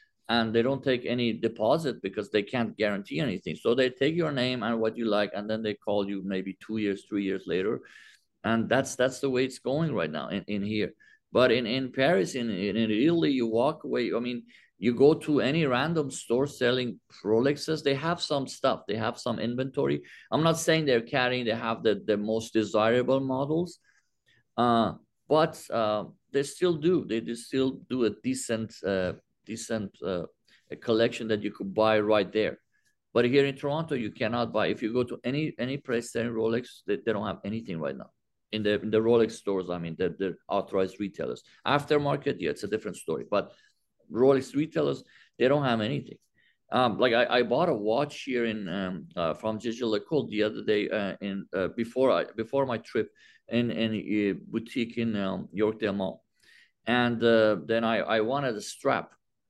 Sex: male